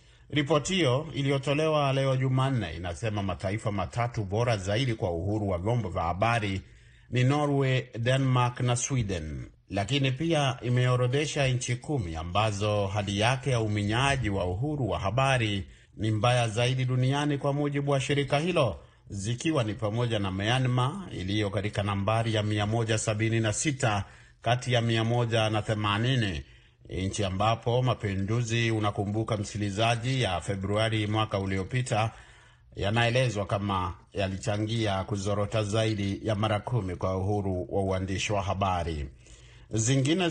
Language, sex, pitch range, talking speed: Swahili, male, 100-130 Hz, 120 wpm